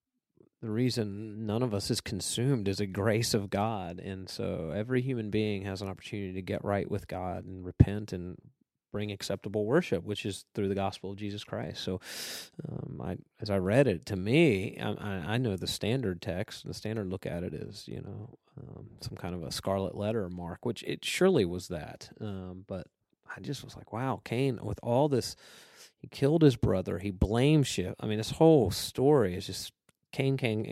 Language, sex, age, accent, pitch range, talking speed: English, male, 30-49, American, 95-120 Hz, 195 wpm